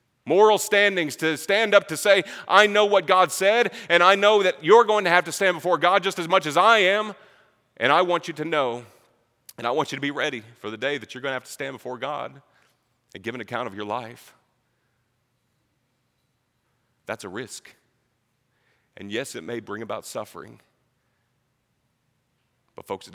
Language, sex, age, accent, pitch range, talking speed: English, male, 40-59, American, 115-145 Hz, 195 wpm